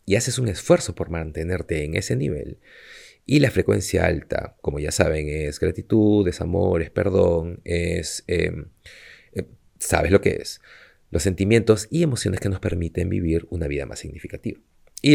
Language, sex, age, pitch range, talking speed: Spanish, male, 30-49, 85-115 Hz, 165 wpm